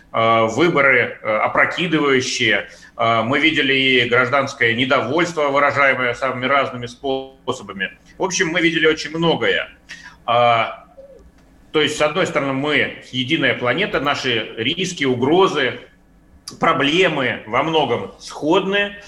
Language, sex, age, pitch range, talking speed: Russian, male, 40-59, 125-155 Hz, 100 wpm